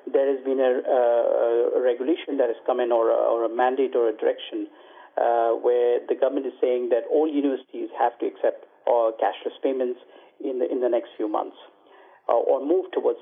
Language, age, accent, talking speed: English, 50-69, Indian, 195 wpm